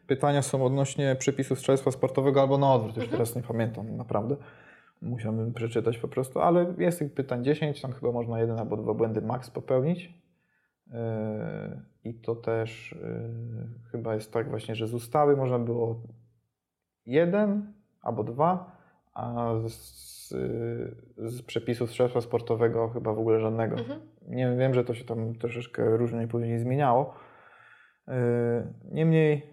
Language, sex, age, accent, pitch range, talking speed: Polish, male, 20-39, native, 115-135 Hz, 140 wpm